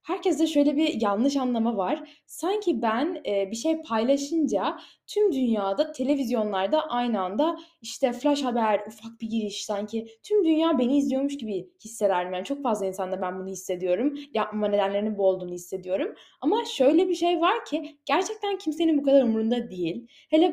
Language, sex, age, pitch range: Turkish, female, 10-29, 220-315 Hz